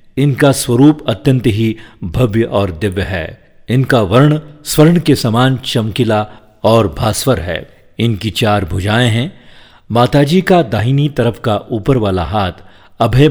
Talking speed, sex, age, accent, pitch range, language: 135 wpm, male, 50-69, native, 105-135 Hz, Hindi